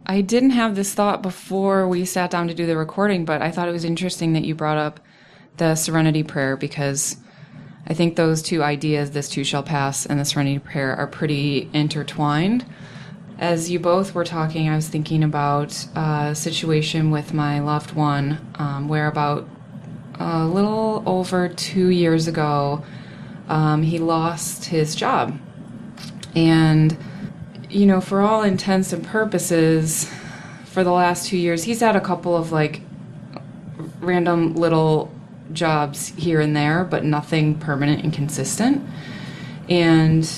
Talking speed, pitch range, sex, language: 155 wpm, 150-180 Hz, female, English